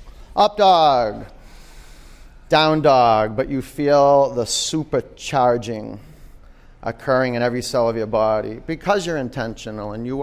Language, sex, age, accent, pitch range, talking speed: English, male, 30-49, American, 115-165 Hz, 125 wpm